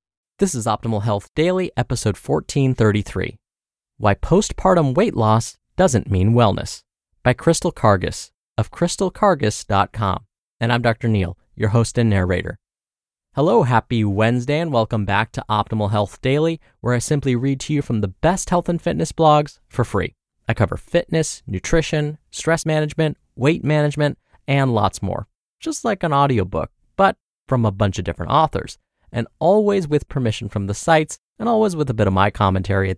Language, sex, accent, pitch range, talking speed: English, male, American, 100-150 Hz, 165 wpm